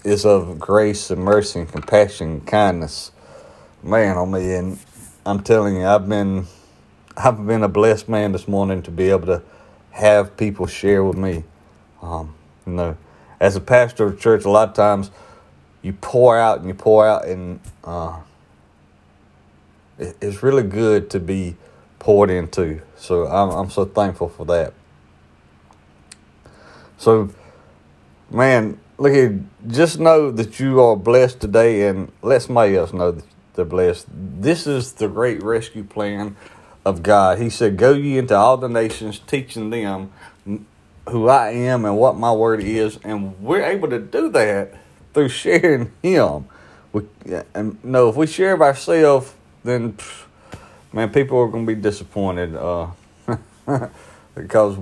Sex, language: male, English